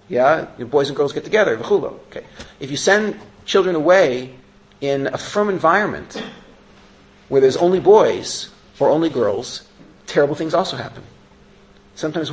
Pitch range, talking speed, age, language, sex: 125-185 Hz, 145 wpm, 40-59, English, male